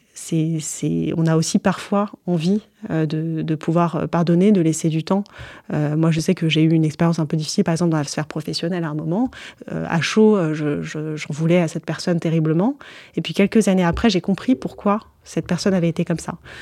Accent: French